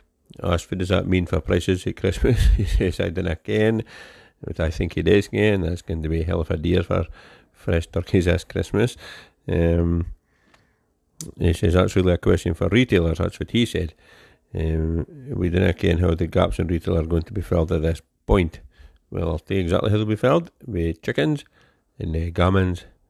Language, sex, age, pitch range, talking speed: English, male, 50-69, 85-95 Hz, 210 wpm